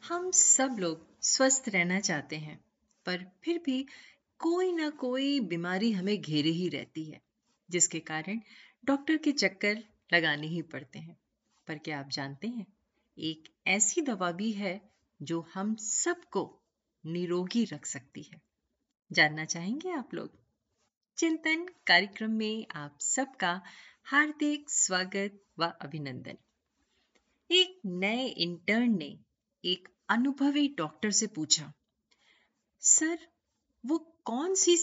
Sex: female